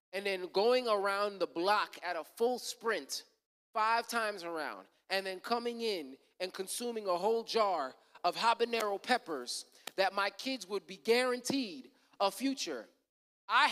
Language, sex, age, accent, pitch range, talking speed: English, male, 30-49, American, 190-270 Hz, 150 wpm